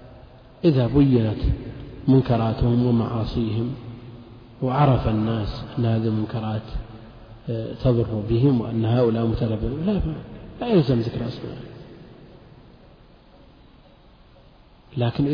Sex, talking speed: male, 75 wpm